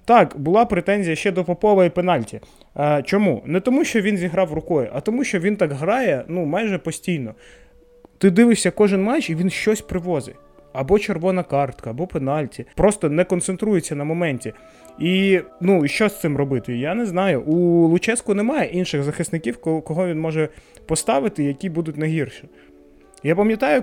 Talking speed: 170 wpm